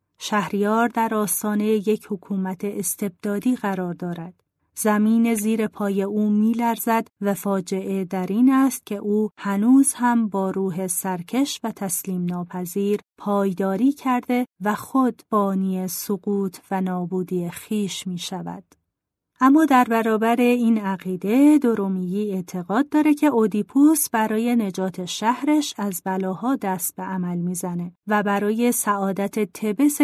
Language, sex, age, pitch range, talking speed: Persian, female, 30-49, 190-235 Hz, 125 wpm